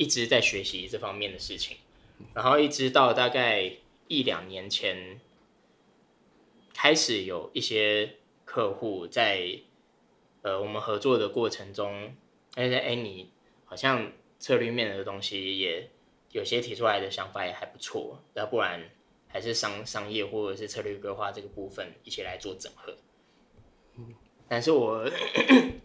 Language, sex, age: Chinese, male, 10-29